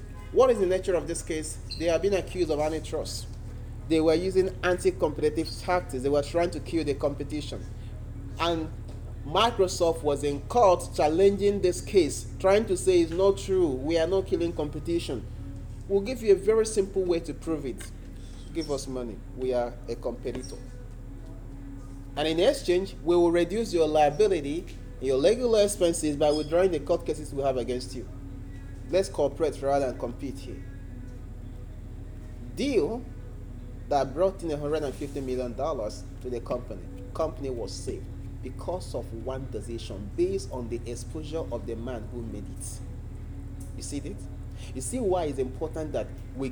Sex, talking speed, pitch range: male, 160 wpm, 105-175 Hz